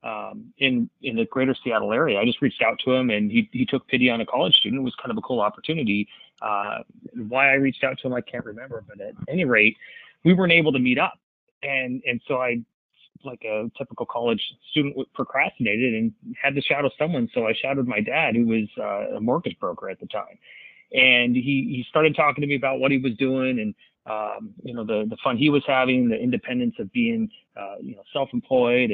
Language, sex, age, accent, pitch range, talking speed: English, male, 30-49, American, 120-150 Hz, 225 wpm